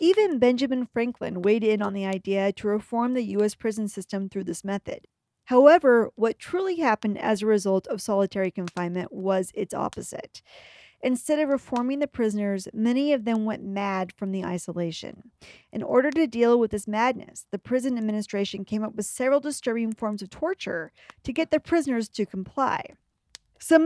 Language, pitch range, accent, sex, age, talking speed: English, 210-275 Hz, American, female, 40-59, 170 wpm